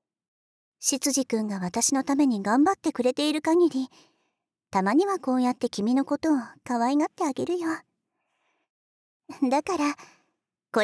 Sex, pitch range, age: male, 250-330 Hz, 40-59